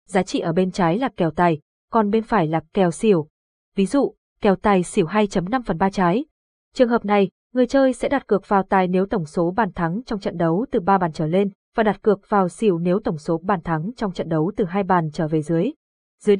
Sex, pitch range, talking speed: female, 180-230 Hz, 235 wpm